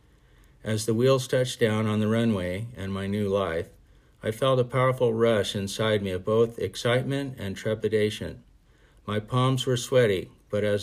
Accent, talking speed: American, 165 wpm